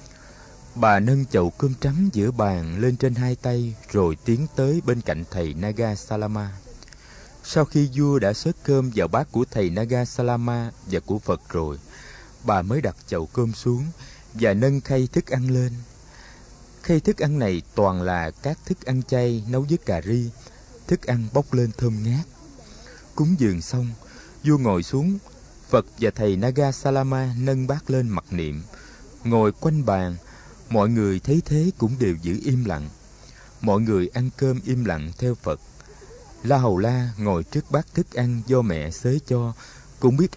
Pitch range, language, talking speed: 105-140 Hz, Vietnamese, 175 wpm